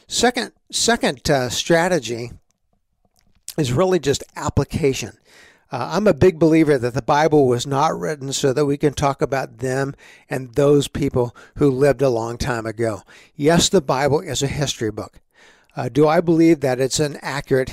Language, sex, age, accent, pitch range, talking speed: English, male, 60-79, American, 135-180 Hz, 170 wpm